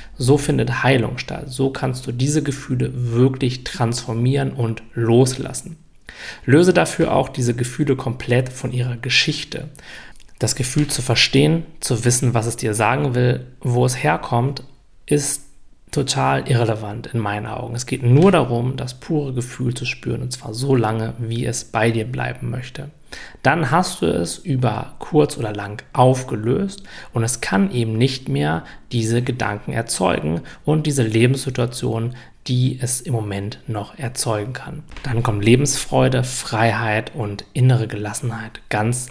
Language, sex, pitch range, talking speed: German, male, 115-140 Hz, 150 wpm